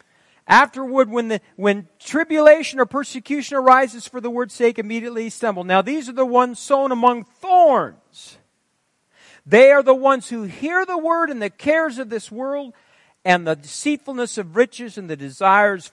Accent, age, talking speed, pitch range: American, 50-69, 165 wpm, 200-285 Hz